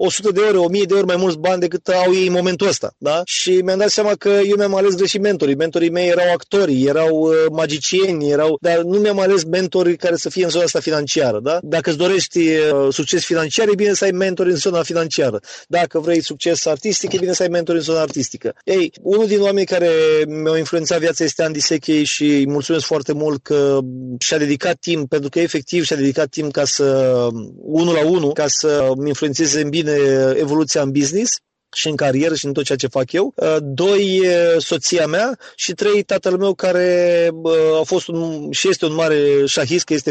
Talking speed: 210 wpm